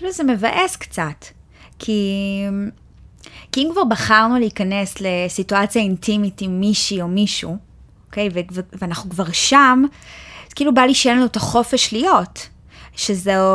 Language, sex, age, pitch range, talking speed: Hebrew, female, 20-39, 200-255 Hz, 135 wpm